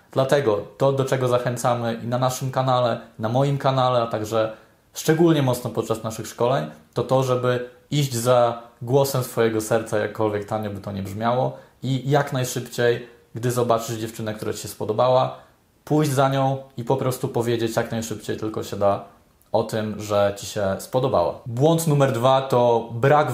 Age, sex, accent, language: 20-39, male, native, Polish